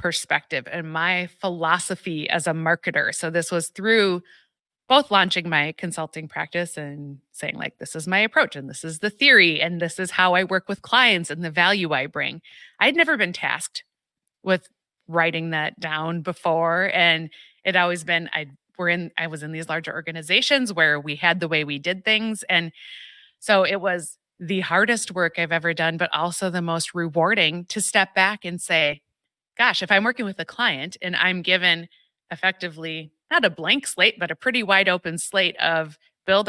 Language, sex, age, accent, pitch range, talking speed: English, female, 30-49, American, 160-190 Hz, 185 wpm